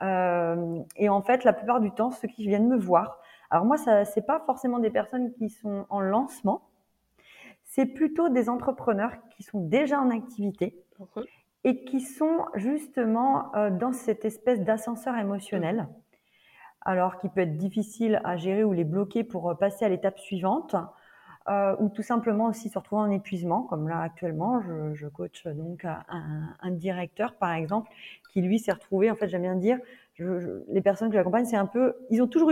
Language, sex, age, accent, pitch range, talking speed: French, female, 30-49, French, 180-230 Hz, 190 wpm